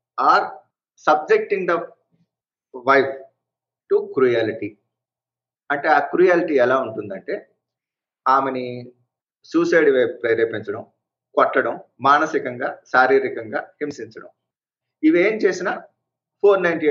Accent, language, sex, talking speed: native, Telugu, male, 80 wpm